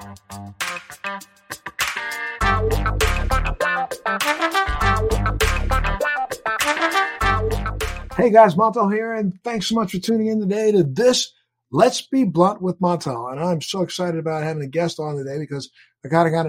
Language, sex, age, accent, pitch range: English, male, 50-69, American, 130-170 Hz